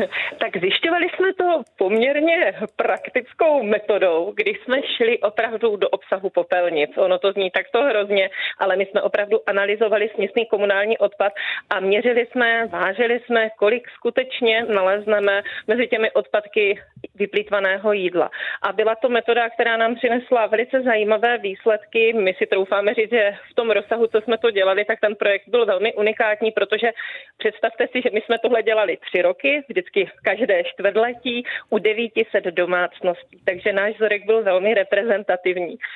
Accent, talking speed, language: native, 150 wpm, Czech